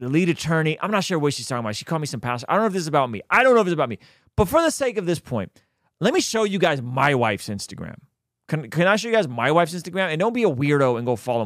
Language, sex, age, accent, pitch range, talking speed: English, male, 30-49, American, 100-155 Hz, 325 wpm